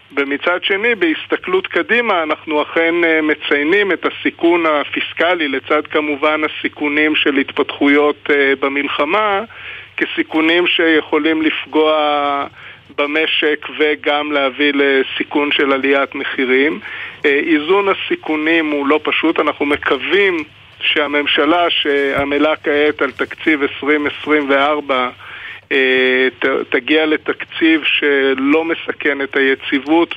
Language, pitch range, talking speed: Hebrew, 145-175 Hz, 90 wpm